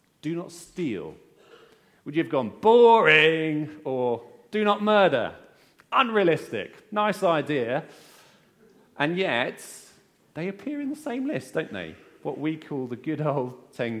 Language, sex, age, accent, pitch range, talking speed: English, male, 30-49, British, 105-170 Hz, 135 wpm